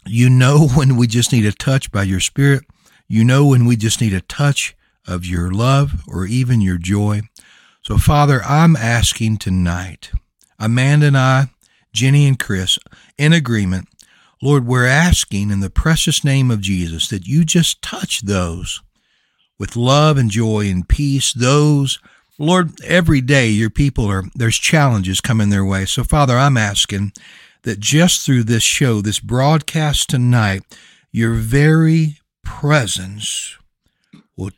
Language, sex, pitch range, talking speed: English, male, 105-145 Hz, 150 wpm